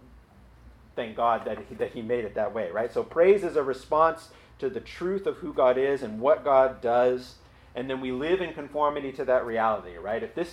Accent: American